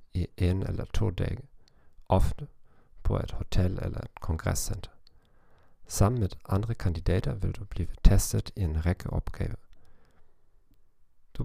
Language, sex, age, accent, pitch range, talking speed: Danish, male, 40-59, German, 90-105 Hz, 125 wpm